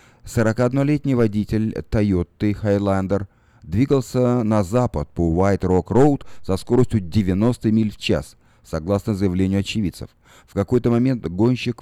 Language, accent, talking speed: Russian, native, 120 wpm